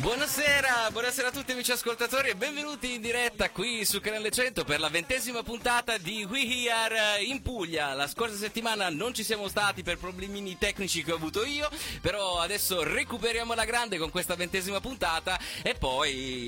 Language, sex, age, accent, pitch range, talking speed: Italian, male, 30-49, native, 150-225 Hz, 180 wpm